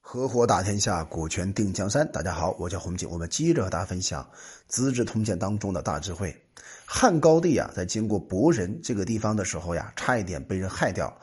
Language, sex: Chinese, male